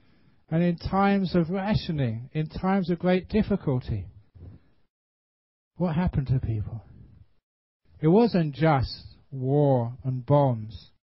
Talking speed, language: 110 wpm, English